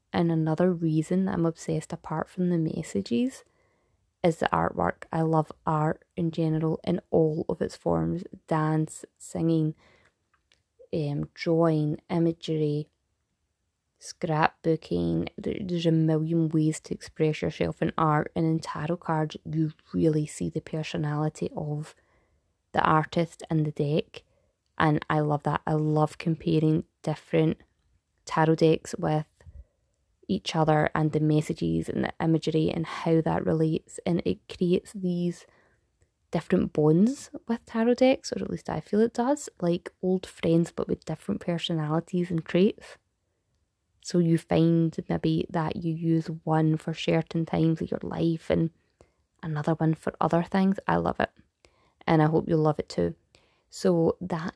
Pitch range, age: 155-170 Hz, 20-39